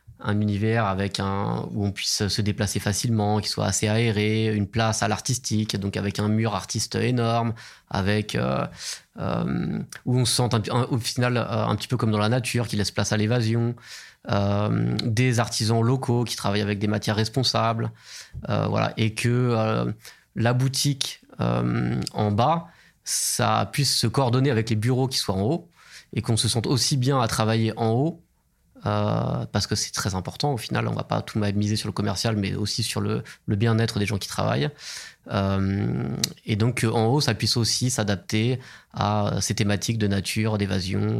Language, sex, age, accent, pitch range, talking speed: French, male, 20-39, French, 105-120 Hz, 185 wpm